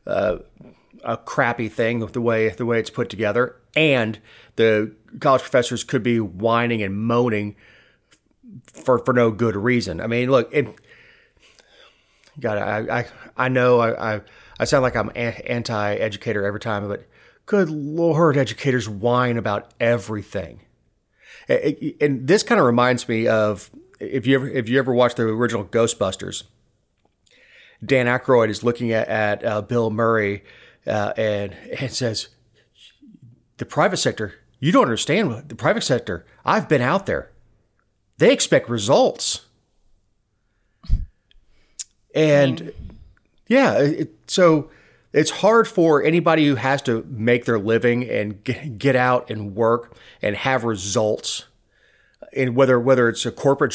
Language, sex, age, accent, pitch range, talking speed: English, male, 30-49, American, 110-135 Hz, 140 wpm